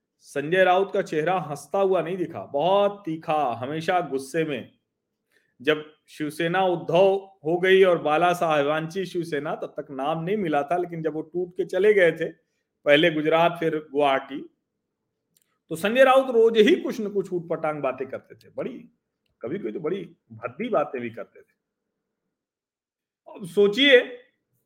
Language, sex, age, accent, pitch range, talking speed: Hindi, male, 40-59, native, 155-225 Hz, 140 wpm